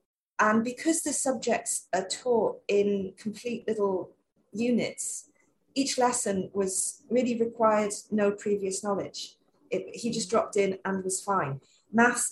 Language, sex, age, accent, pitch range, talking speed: English, female, 40-59, British, 190-260 Hz, 125 wpm